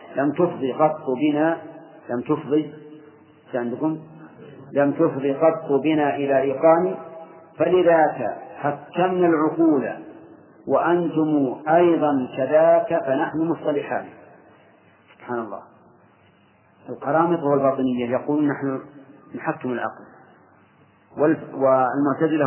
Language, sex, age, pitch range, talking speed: Arabic, male, 40-59, 135-155 Hz, 80 wpm